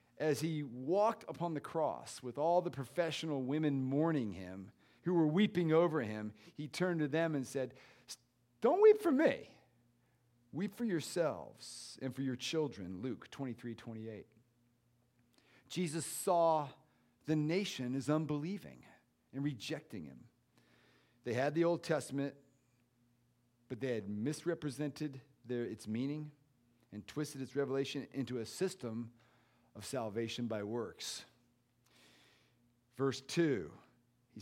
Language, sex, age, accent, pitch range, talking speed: English, male, 40-59, American, 120-150 Hz, 125 wpm